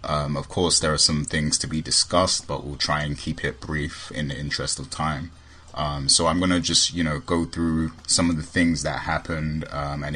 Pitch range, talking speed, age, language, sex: 75-85 Hz, 235 wpm, 20-39, English, male